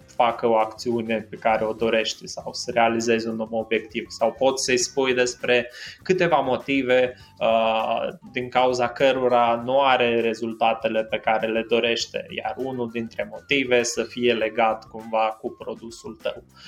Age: 20-39